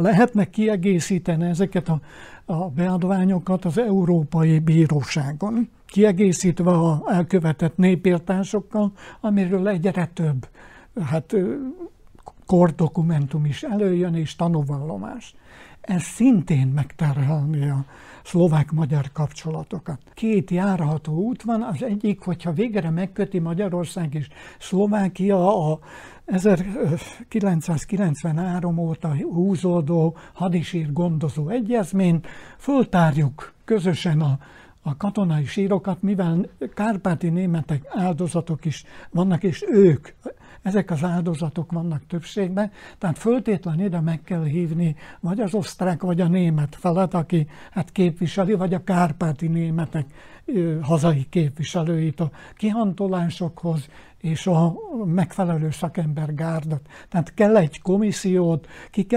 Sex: male